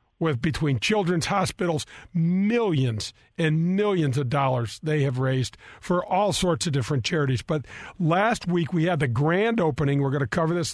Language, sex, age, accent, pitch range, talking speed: English, male, 50-69, American, 145-180 Hz, 170 wpm